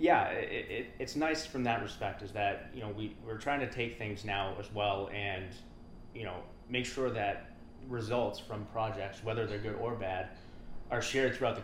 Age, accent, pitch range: 20-39, American, 100-115 Hz